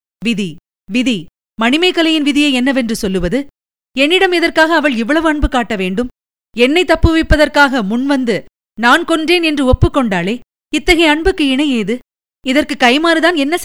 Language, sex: Tamil, female